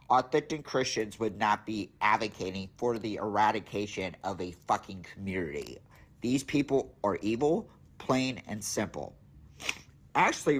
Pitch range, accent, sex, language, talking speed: 95-125 Hz, American, male, English, 120 wpm